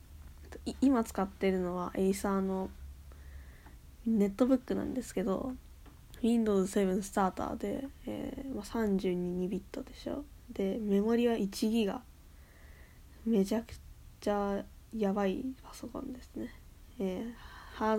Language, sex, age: Japanese, female, 10-29